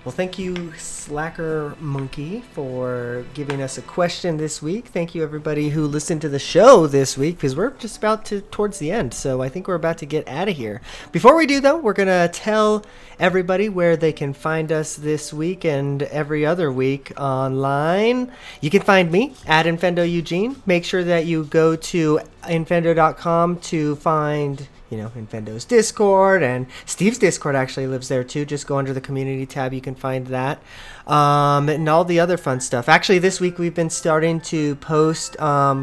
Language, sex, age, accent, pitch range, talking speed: English, male, 30-49, American, 140-180 Hz, 190 wpm